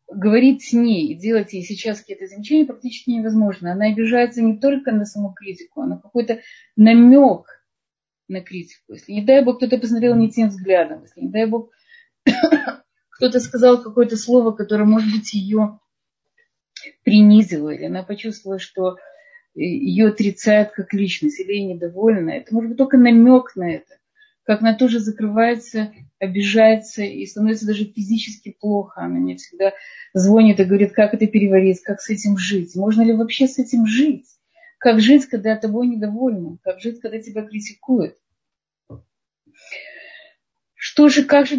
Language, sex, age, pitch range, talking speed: Russian, female, 30-49, 210-255 Hz, 155 wpm